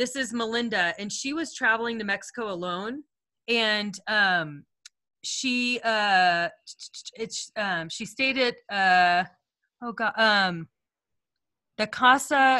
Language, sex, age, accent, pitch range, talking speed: English, female, 30-49, American, 185-235 Hz, 120 wpm